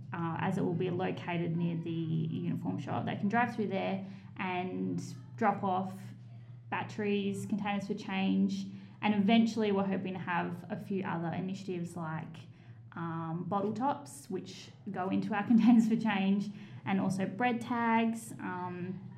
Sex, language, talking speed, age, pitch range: female, English, 150 wpm, 10-29, 170-210 Hz